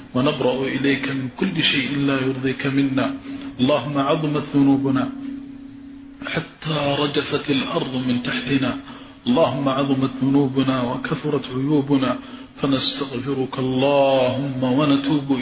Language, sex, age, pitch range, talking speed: Arabic, male, 40-59, 135-145 Hz, 95 wpm